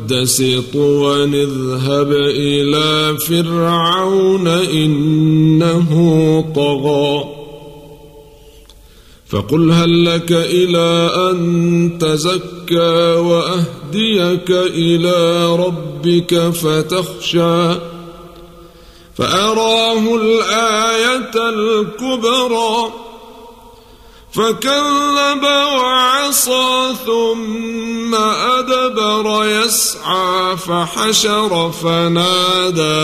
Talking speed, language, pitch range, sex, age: 45 wpm, Arabic, 155-240 Hz, male, 50-69